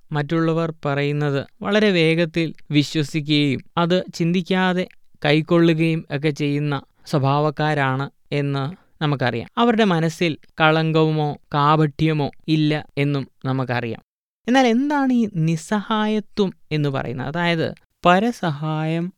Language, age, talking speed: Malayalam, 20-39, 90 wpm